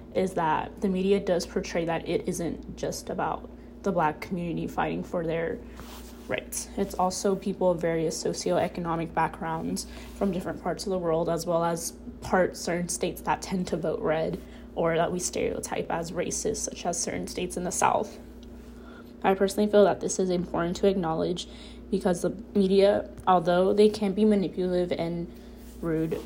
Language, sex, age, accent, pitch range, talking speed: English, female, 20-39, American, 170-200 Hz, 170 wpm